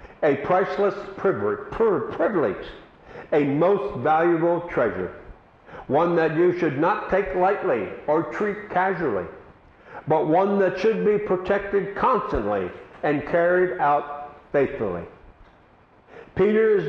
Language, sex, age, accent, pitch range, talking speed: Russian, male, 60-79, American, 145-190 Hz, 105 wpm